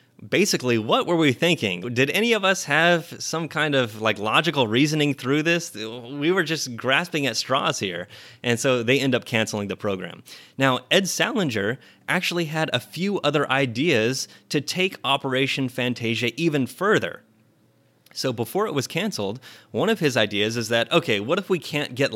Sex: male